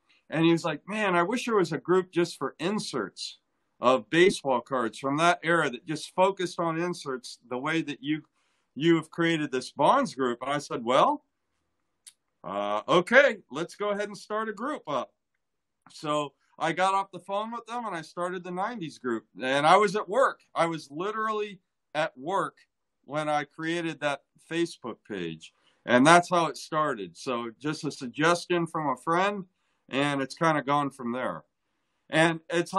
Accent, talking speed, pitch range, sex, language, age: American, 185 wpm, 140-180 Hz, male, English, 50-69